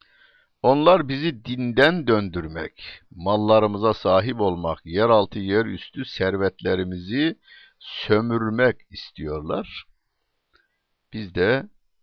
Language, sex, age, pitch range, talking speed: Turkish, male, 60-79, 85-115 Hz, 80 wpm